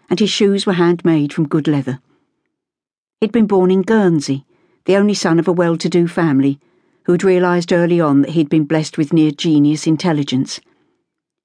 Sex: female